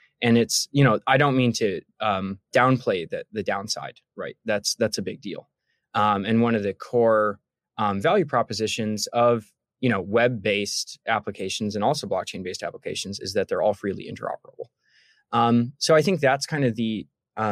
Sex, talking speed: male, 175 wpm